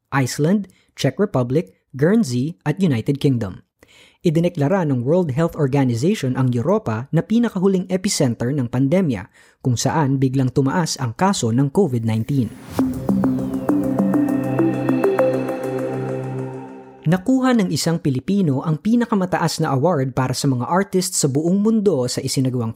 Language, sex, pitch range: Filipino, female, 130-175 Hz